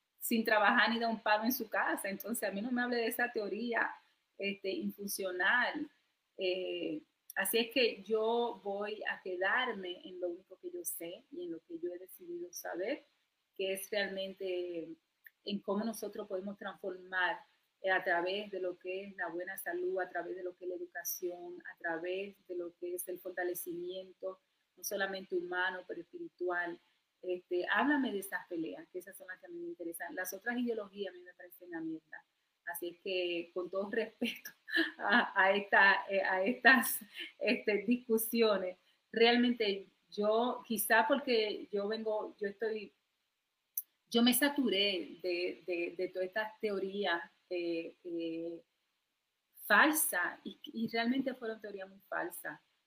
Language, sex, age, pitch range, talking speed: Spanish, female, 30-49, 180-225 Hz, 160 wpm